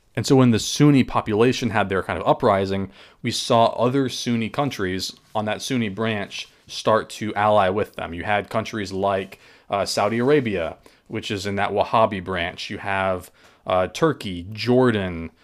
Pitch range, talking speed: 100-115 Hz, 165 wpm